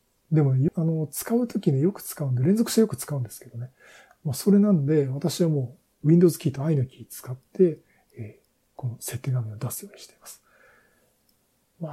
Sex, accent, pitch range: male, native, 125-180 Hz